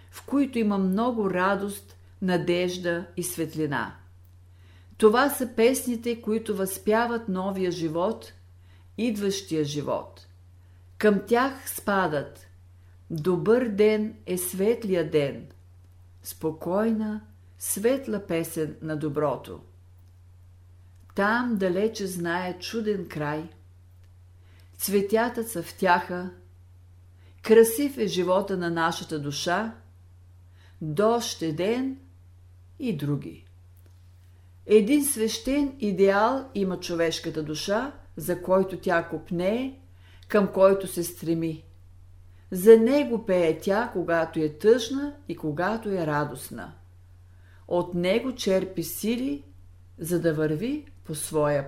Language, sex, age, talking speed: Bulgarian, female, 50-69, 95 wpm